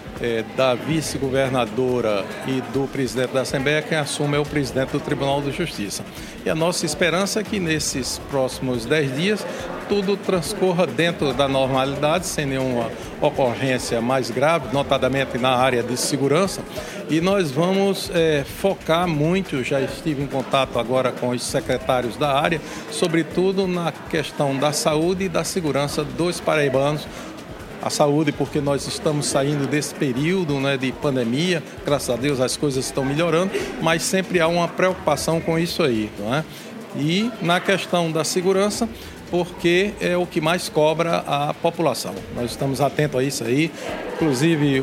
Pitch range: 130-165 Hz